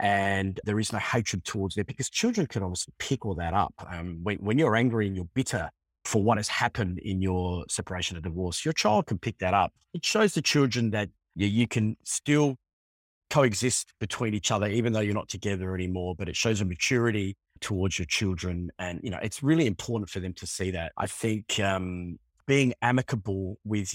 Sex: male